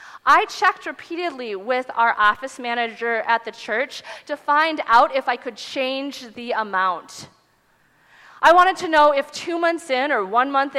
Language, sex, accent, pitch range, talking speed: English, female, American, 220-290 Hz, 165 wpm